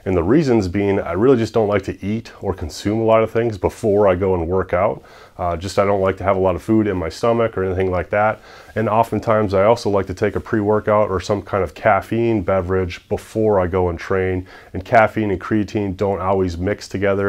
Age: 30-49